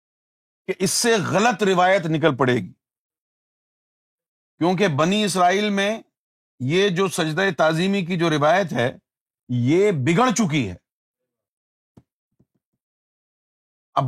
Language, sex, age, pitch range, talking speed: Urdu, male, 40-59, 145-200 Hz, 105 wpm